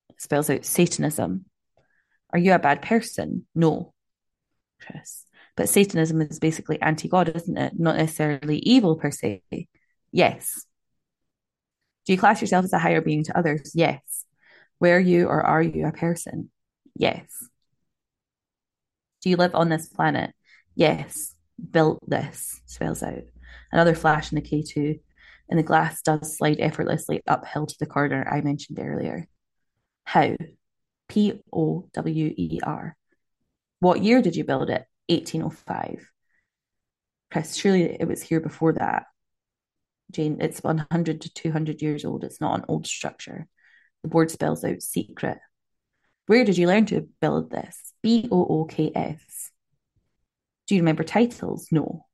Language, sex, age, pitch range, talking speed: English, female, 20-39, 155-180 Hz, 145 wpm